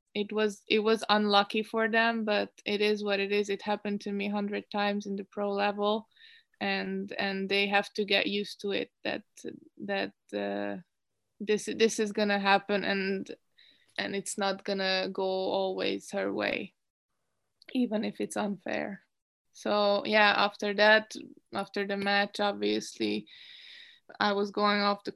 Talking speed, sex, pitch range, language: 160 wpm, female, 195-210 Hz, English